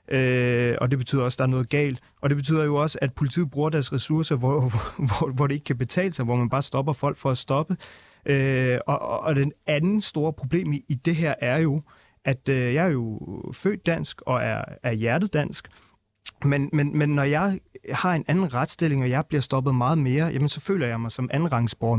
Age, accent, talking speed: 30-49, native, 225 wpm